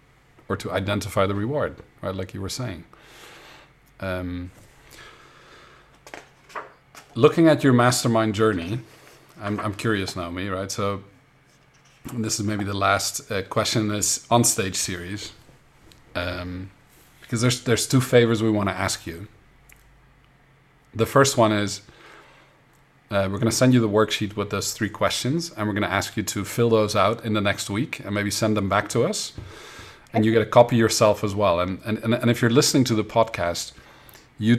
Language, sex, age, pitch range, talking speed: English, male, 40-59, 100-120 Hz, 165 wpm